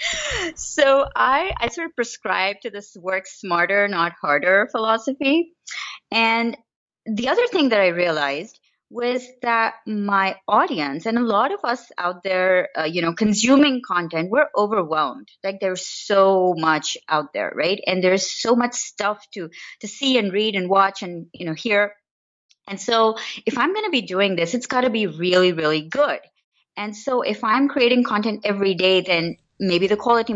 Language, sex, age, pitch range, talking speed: English, female, 30-49, 185-250 Hz, 175 wpm